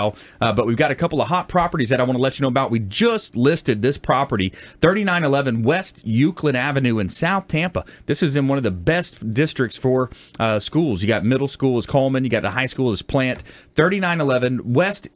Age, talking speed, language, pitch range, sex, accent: 30-49, 220 wpm, English, 110-145 Hz, male, American